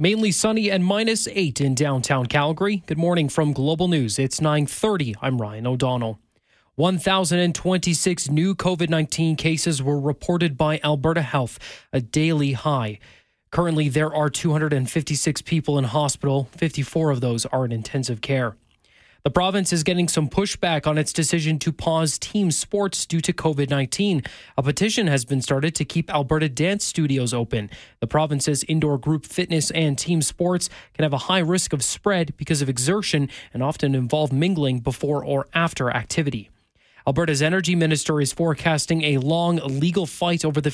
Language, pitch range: English, 135-170 Hz